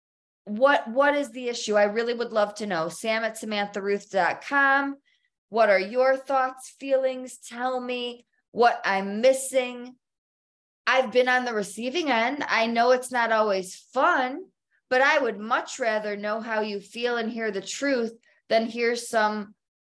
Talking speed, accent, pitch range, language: 155 wpm, American, 190-245 Hz, English